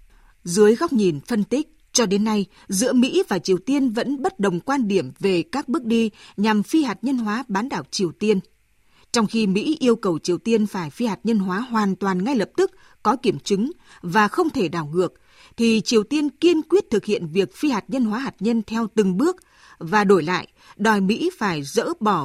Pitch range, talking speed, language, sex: 185-245 Hz, 220 wpm, Vietnamese, female